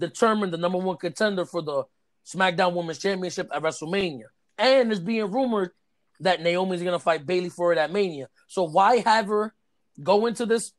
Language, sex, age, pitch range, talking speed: English, male, 20-39, 160-210 Hz, 185 wpm